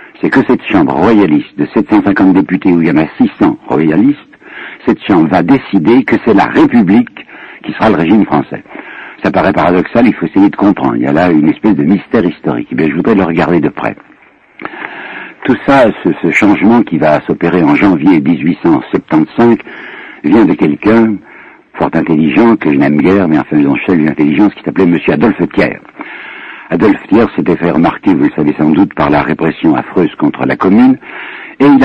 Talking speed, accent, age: 195 wpm, French, 60-79